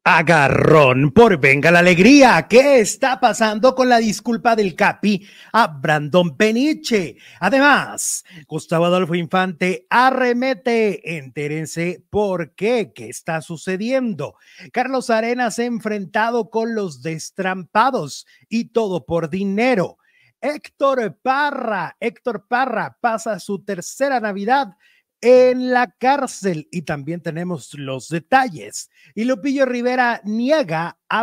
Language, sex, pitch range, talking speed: Malay, male, 175-245 Hz, 110 wpm